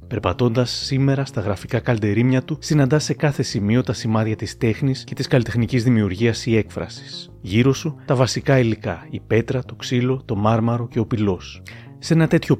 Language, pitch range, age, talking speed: Greek, 110-135 Hz, 30-49, 175 wpm